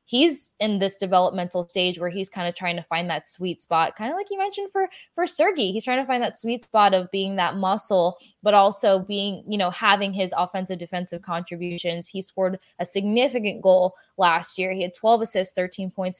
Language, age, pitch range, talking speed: English, 20-39, 175-200 Hz, 210 wpm